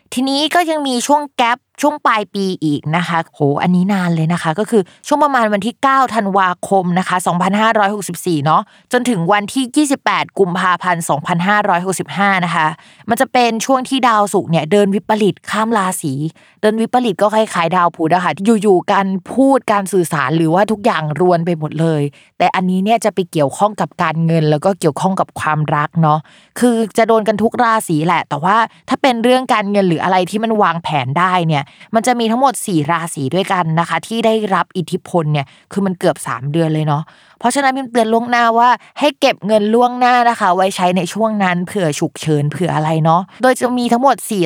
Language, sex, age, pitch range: Thai, female, 20-39, 165-220 Hz